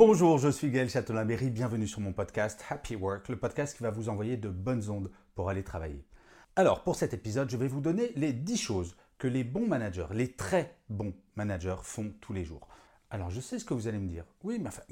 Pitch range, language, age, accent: 100-140 Hz, French, 40-59, French